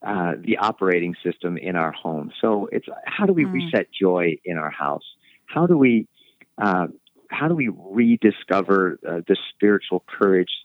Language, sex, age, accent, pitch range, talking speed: English, male, 40-59, American, 90-125 Hz, 165 wpm